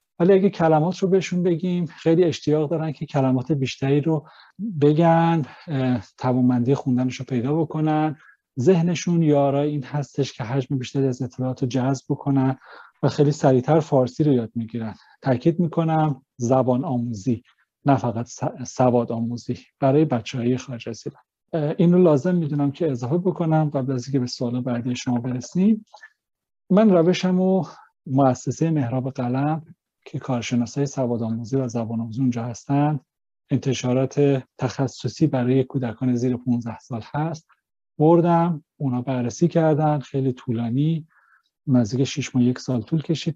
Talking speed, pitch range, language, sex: 135 wpm, 125-155 Hz, Persian, male